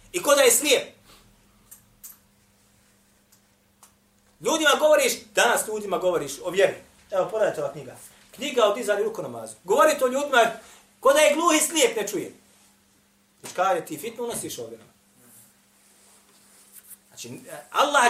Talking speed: 120 wpm